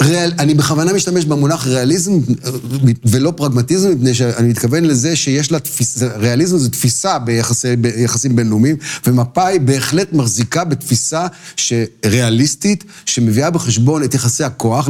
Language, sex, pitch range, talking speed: Hebrew, male, 120-155 Hz, 125 wpm